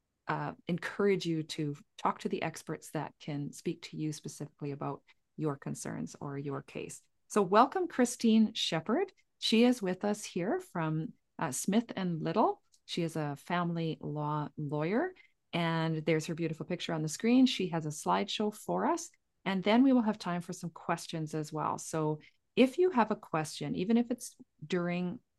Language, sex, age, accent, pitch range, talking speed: English, female, 40-59, American, 155-215 Hz, 175 wpm